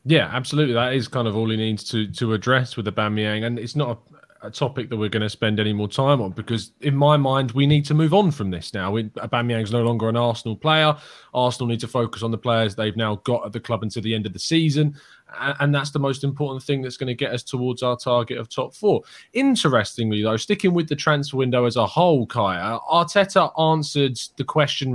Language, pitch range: English, 110-140 Hz